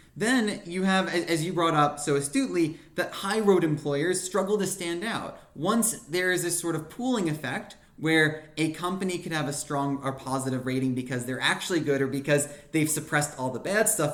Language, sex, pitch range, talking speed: English, male, 145-190 Hz, 200 wpm